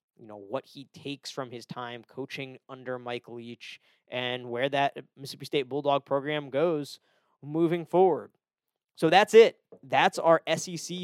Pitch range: 135-165 Hz